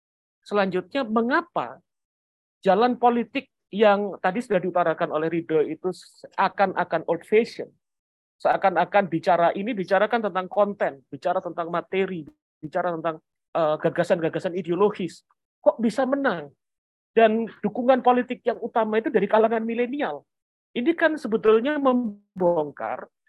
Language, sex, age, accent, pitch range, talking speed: Indonesian, male, 40-59, native, 170-230 Hz, 115 wpm